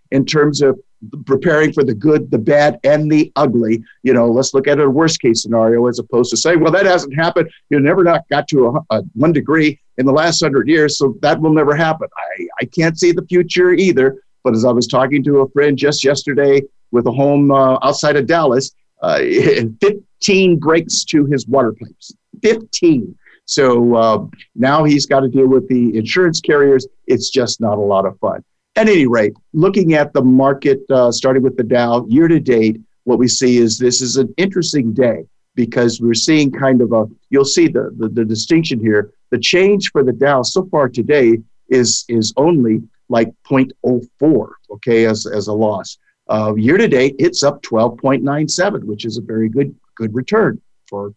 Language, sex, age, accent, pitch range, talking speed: English, male, 50-69, American, 115-150 Hz, 195 wpm